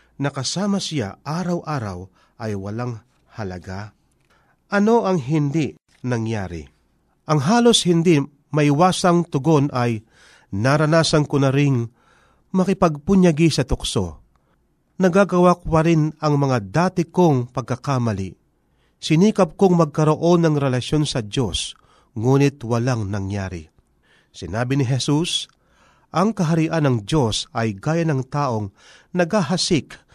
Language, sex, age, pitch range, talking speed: Filipino, male, 40-59, 115-165 Hz, 105 wpm